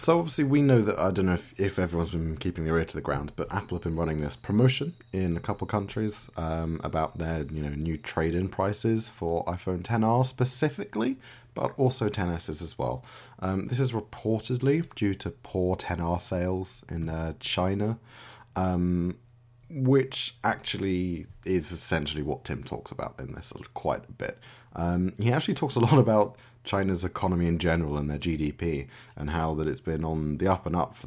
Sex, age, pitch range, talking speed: male, 20-39, 80-120 Hz, 195 wpm